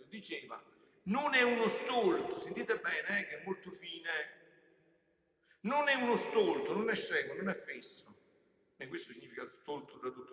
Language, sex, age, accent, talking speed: Italian, male, 60-79, native, 165 wpm